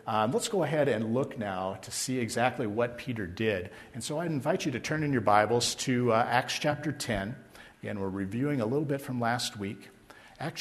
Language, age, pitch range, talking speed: English, 50-69, 110-135 Hz, 215 wpm